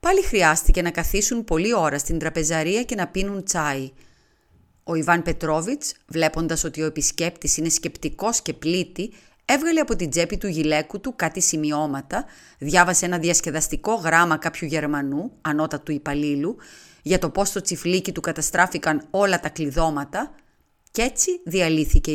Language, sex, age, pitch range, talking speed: Greek, female, 30-49, 155-210 Hz, 145 wpm